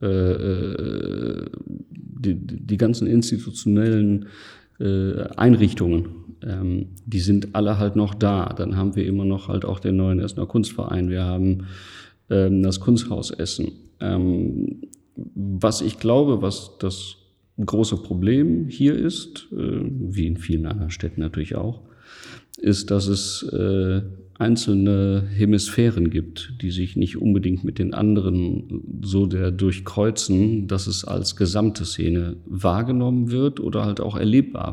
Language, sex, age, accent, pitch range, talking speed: German, male, 40-59, German, 90-110 Hz, 130 wpm